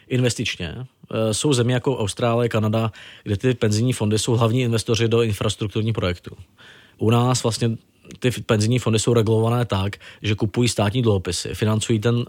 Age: 20-39